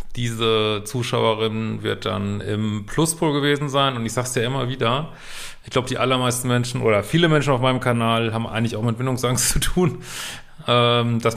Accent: German